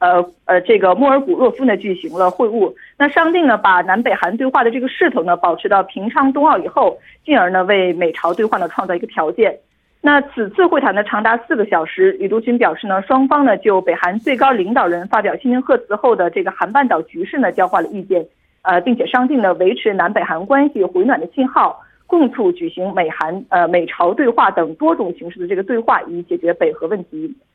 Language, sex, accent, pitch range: Korean, female, Chinese, 190-290 Hz